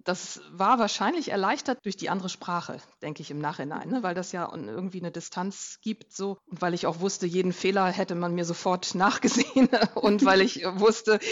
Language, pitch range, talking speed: German, 170-210 Hz, 195 wpm